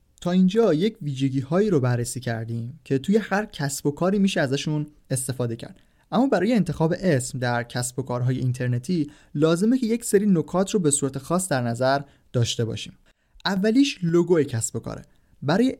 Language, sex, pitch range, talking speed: Persian, male, 125-175 Hz, 175 wpm